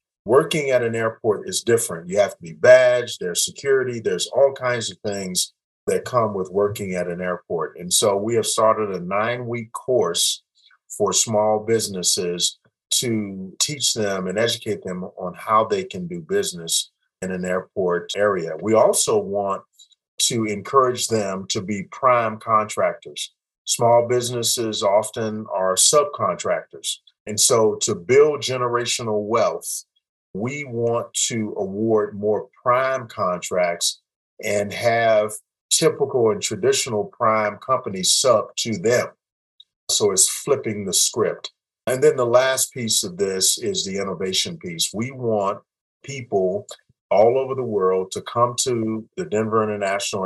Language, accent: English, American